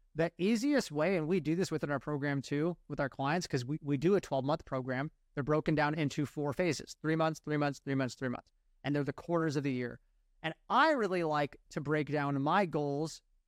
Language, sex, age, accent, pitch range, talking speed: English, male, 30-49, American, 140-170 Hz, 225 wpm